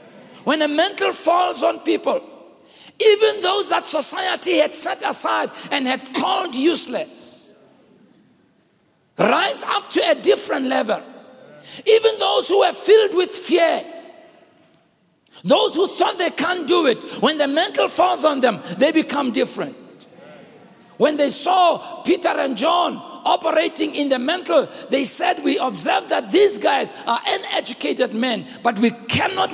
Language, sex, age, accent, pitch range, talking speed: English, male, 60-79, South African, 275-350 Hz, 140 wpm